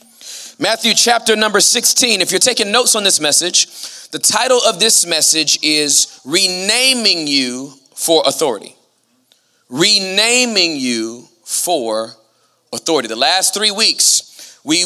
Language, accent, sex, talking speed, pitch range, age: English, American, male, 120 wpm, 160-230 Hz, 30-49